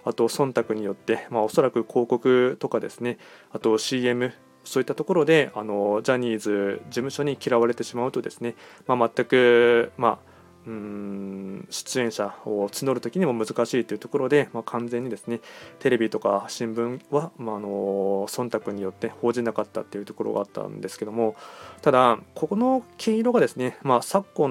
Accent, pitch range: native, 115-150 Hz